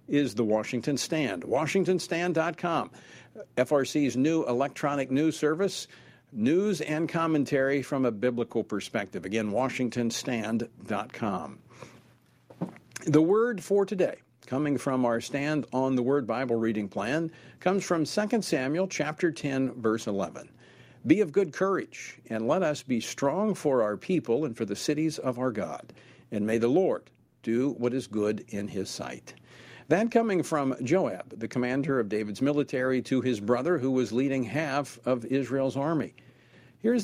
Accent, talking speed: American, 145 wpm